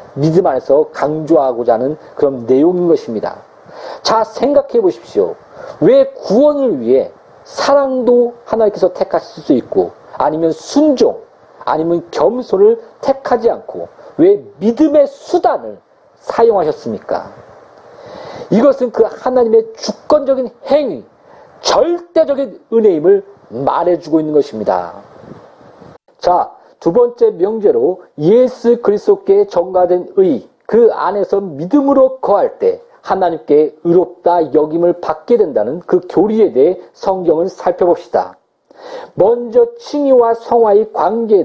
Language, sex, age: Korean, male, 40-59